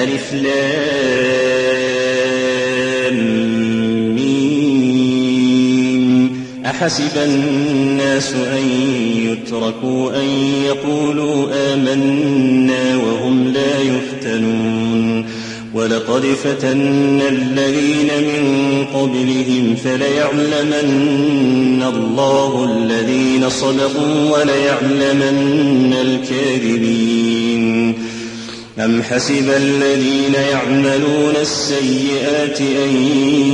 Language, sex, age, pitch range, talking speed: Arabic, male, 30-49, 130-140 Hz, 50 wpm